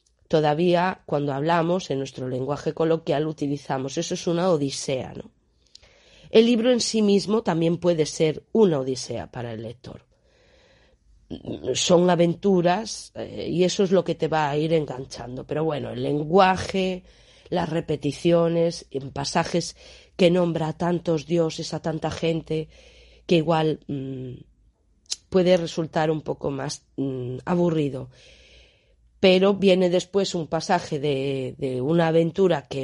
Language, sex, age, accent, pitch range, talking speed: Spanish, female, 30-49, Spanish, 145-190 Hz, 135 wpm